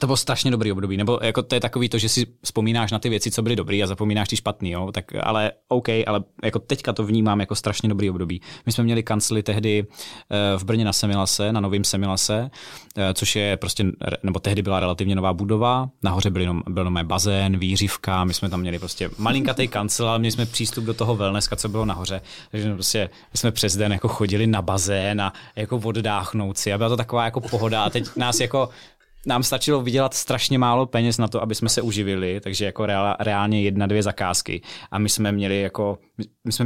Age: 20-39